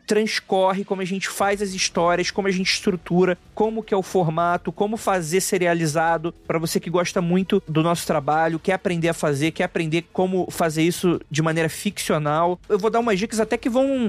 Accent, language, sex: Brazilian, Portuguese, male